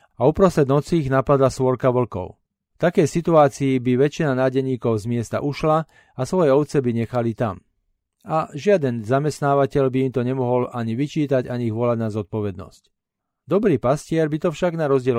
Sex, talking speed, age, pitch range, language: male, 165 wpm, 40-59, 120-155 Hz, Slovak